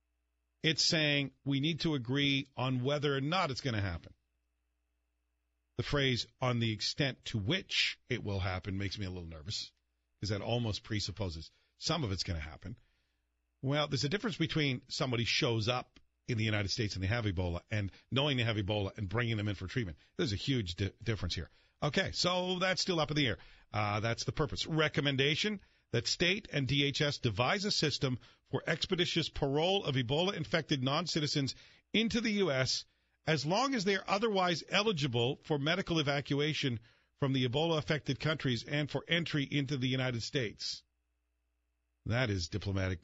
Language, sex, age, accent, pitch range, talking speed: English, male, 50-69, American, 100-150 Hz, 175 wpm